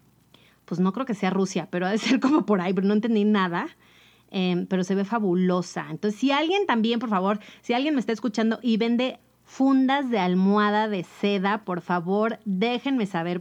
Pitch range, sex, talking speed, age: 180-220 Hz, female, 195 wpm, 30-49